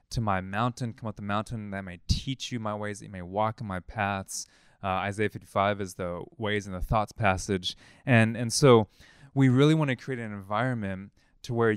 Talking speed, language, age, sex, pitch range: 215 wpm, English, 20-39, male, 100-130 Hz